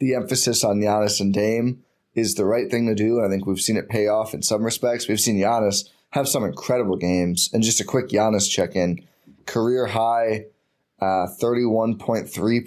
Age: 10-29